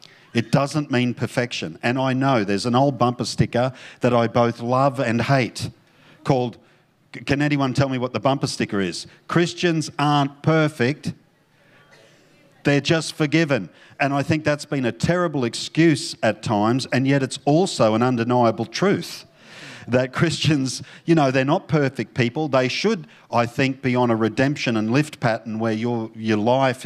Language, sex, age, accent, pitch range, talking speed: English, male, 50-69, Australian, 115-150 Hz, 165 wpm